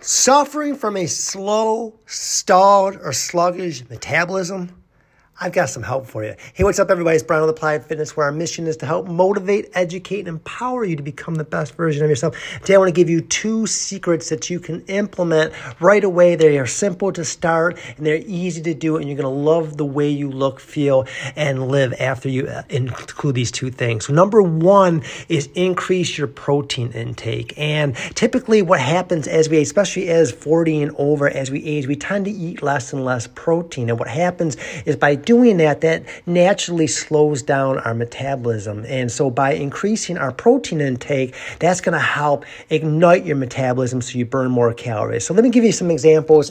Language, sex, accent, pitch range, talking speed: English, male, American, 135-180 Hz, 195 wpm